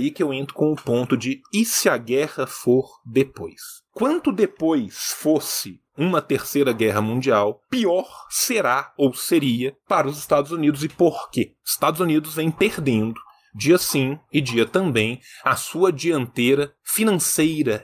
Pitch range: 130-195 Hz